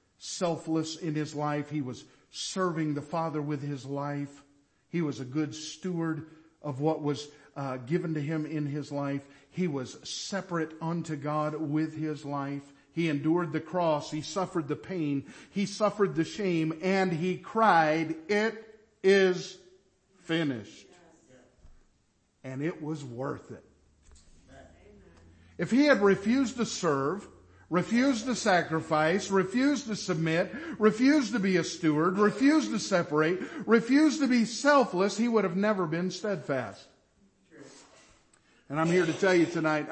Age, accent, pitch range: 50-69, American, 140-195 Hz